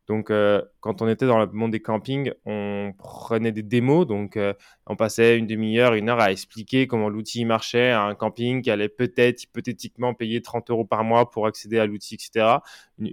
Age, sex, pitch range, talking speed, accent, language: 20-39, male, 110-130 Hz, 205 wpm, French, French